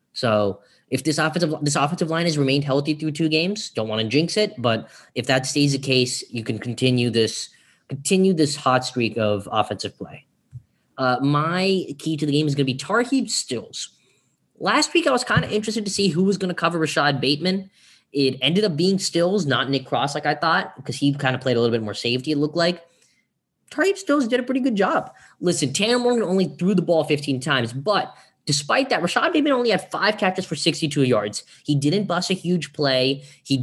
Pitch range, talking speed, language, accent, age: 130-185 Hz, 220 wpm, English, American, 10-29